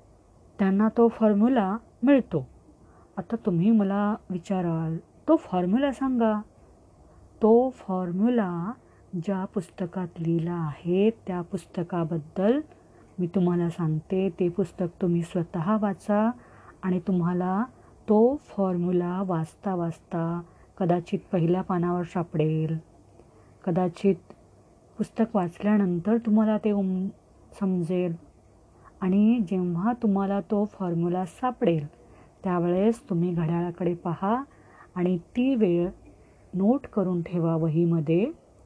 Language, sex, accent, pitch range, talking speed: Marathi, female, native, 170-215 Hz, 90 wpm